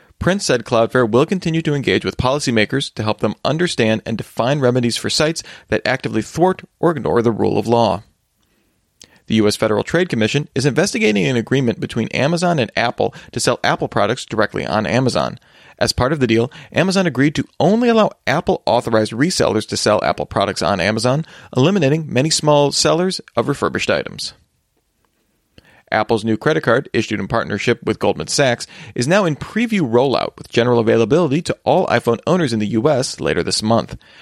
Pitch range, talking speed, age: 115-160 Hz, 175 wpm, 40-59